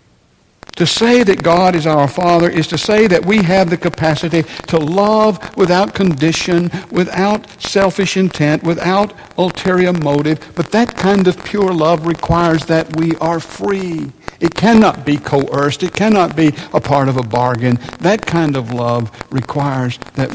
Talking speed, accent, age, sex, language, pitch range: 160 wpm, American, 60-79, male, English, 145-185 Hz